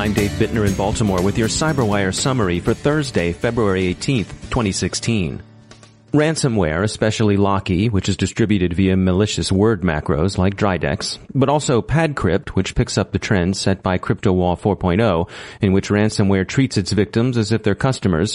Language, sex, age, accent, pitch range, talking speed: English, male, 30-49, American, 95-120 Hz, 155 wpm